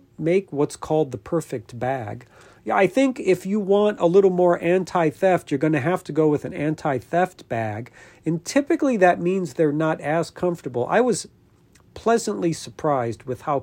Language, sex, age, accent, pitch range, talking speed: English, male, 40-59, American, 120-175 Hz, 185 wpm